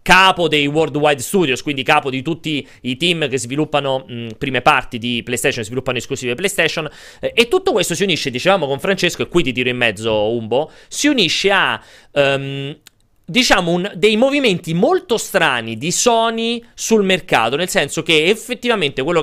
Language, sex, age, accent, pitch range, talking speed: Italian, male, 30-49, native, 140-195 Hz, 170 wpm